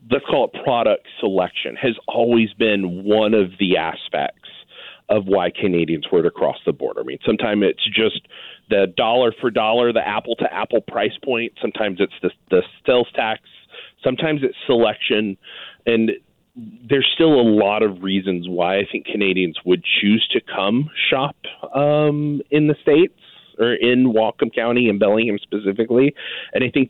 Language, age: English, 40-59